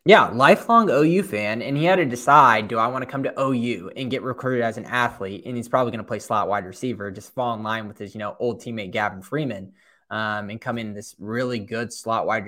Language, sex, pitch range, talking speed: English, male, 105-135 Hz, 250 wpm